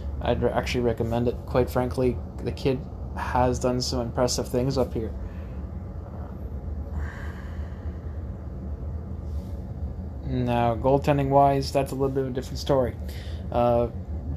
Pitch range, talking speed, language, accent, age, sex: 85-125 Hz, 115 wpm, English, American, 20-39, male